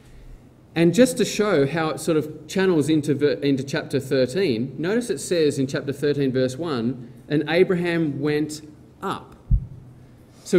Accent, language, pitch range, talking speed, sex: Australian, English, 130-170 Hz, 145 wpm, male